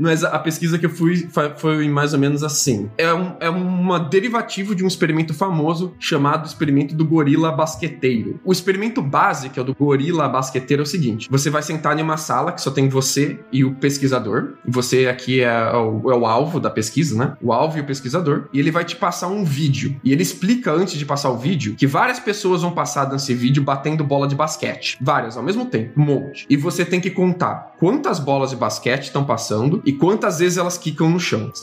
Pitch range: 135-180 Hz